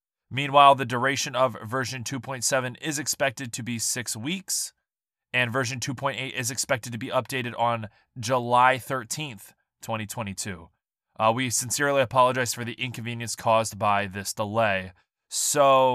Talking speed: 135 wpm